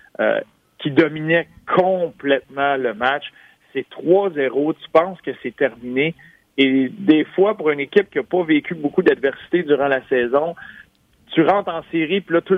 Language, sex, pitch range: French, male, 130-160 Hz